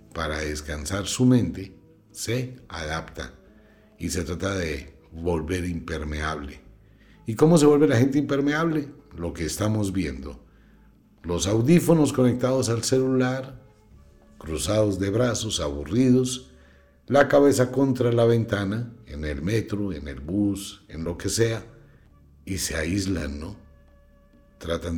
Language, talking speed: English, 125 wpm